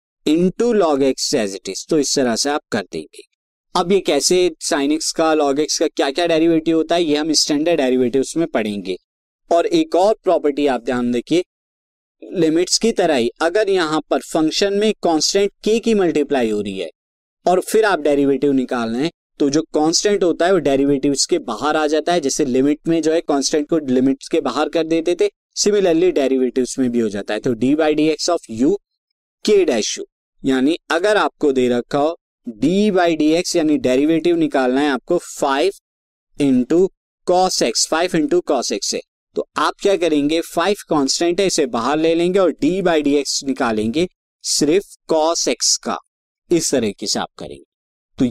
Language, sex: Hindi, male